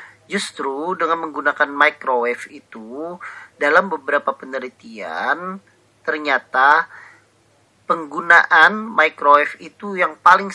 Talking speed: 80 wpm